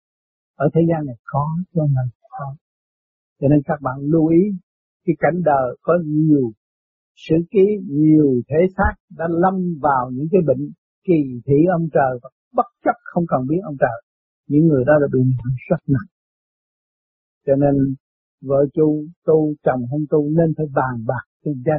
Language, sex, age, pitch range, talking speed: Vietnamese, male, 60-79, 145-185 Hz, 175 wpm